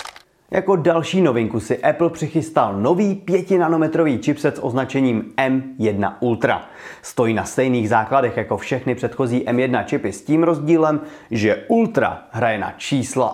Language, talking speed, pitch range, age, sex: Czech, 140 wpm, 125-165 Hz, 30-49, male